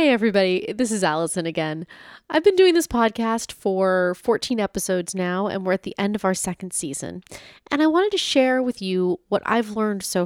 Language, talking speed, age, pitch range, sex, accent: English, 205 wpm, 30-49, 170-215 Hz, female, American